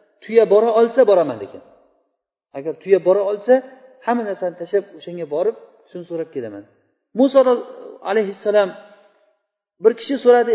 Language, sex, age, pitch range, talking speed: Bulgarian, male, 40-59, 190-255 Hz, 130 wpm